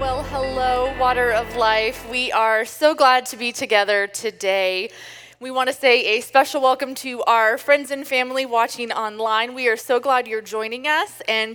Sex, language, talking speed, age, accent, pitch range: female, English, 175 wpm, 20-39, American, 225-280 Hz